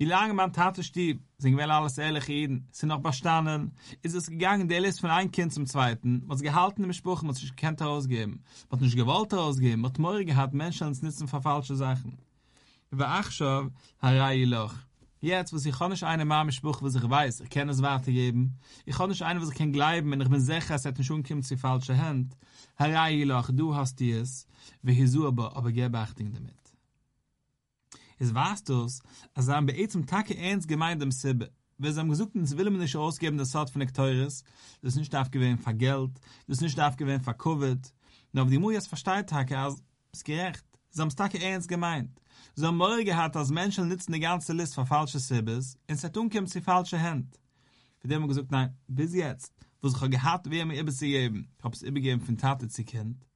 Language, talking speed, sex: English, 195 wpm, male